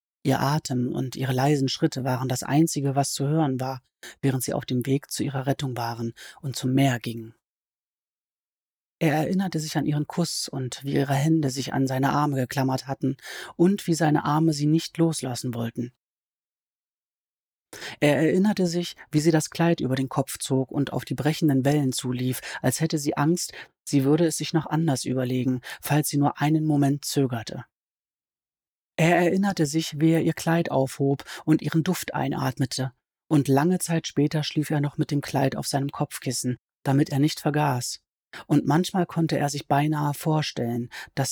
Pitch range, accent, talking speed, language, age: 130-155 Hz, German, 175 wpm, German, 30-49